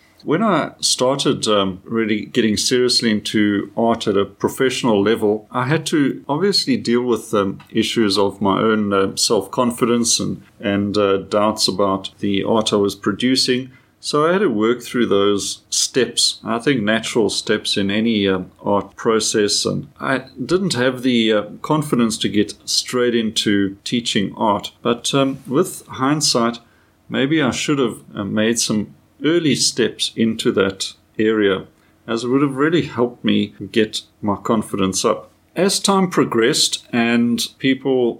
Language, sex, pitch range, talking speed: English, male, 105-125 Hz, 155 wpm